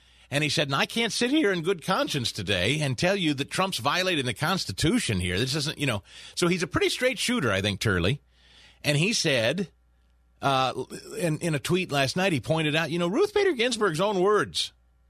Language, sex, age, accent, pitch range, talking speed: English, male, 40-59, American, 110-170 Hz, 215 wpm